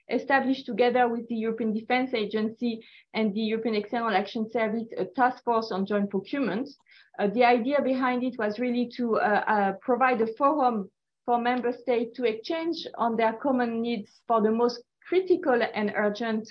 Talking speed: 170 wpm